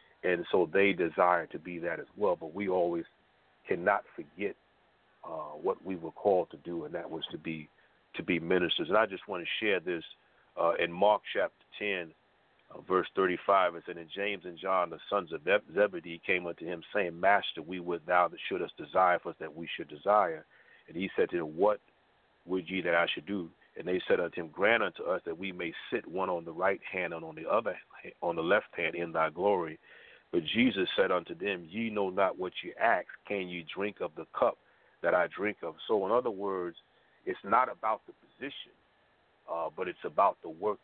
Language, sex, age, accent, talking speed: English, male, 40-59, American, 220 wpm